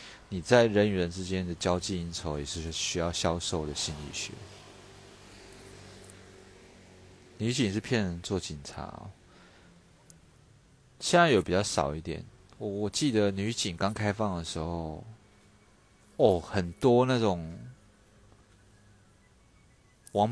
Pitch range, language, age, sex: 80-105 Hz, Chinese, 30-49, male